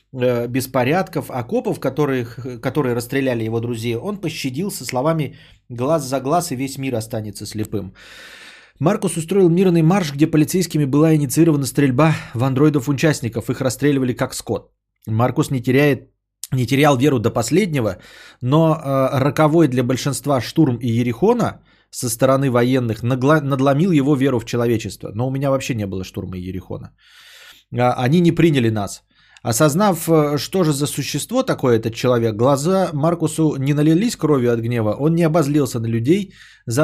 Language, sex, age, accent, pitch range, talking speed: Russian, male, 20-39, native, 120-150 Hz, 145 wpm